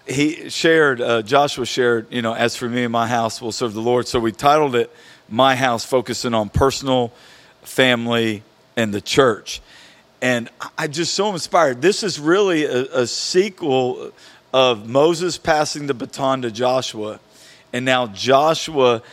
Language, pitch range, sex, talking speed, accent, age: English, 120-150 Hz, male, 160 wpm, American, 50-69